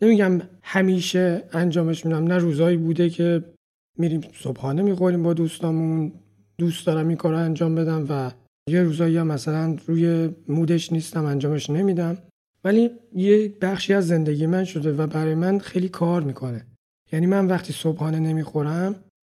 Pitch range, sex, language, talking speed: 160-185 Hz, male, Persian, 145 wpm